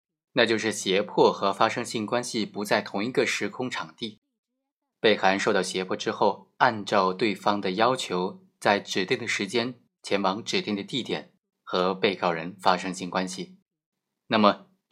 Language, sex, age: Chinese, male, 20-39